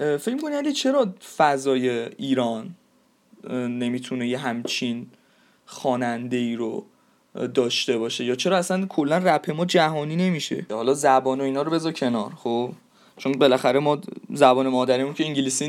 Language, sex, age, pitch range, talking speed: Persian, male, 20-39, 130-195 Hz, 140 wpm